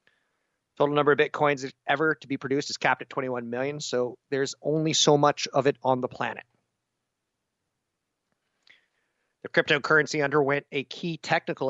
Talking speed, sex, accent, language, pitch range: 150 wpm, male, American, English, 120-145 Hz